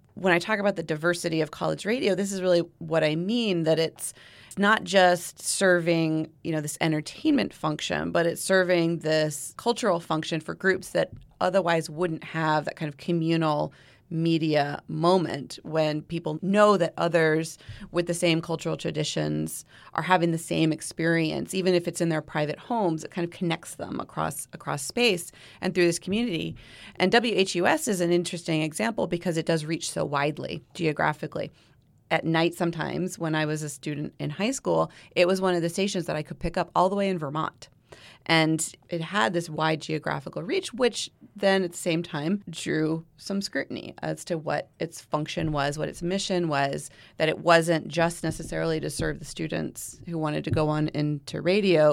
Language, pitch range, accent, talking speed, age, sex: English, 155-180 Hz, American, 185 wpm, 30-49, female